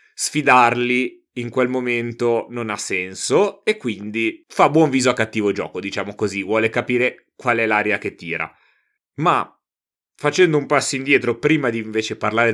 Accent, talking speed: native, 160 wpm